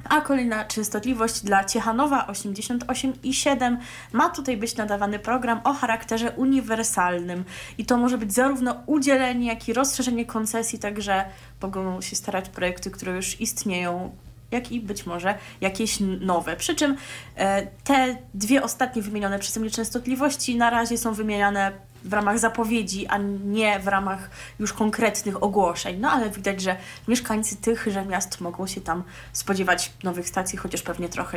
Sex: female